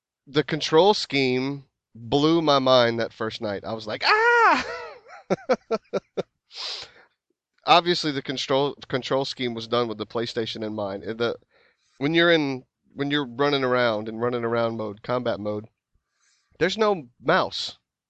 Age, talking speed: 30-49, 140 wpm